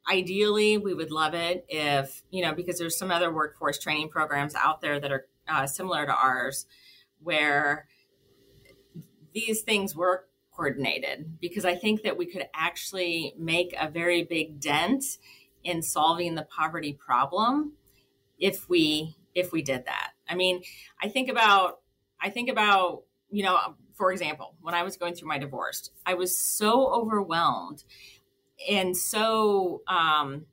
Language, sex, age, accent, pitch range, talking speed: English, female, 30-49, American, 155-210 Hz, 155 wpm